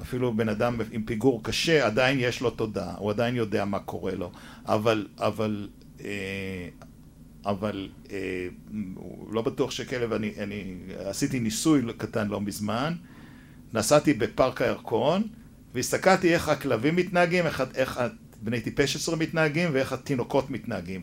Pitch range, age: 115-175 Hz, 60-79